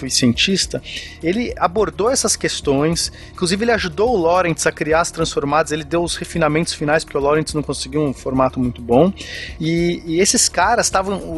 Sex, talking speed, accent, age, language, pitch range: male, 180 wpm, Brazilian, 30-49, Portuguese, 155-205 Hz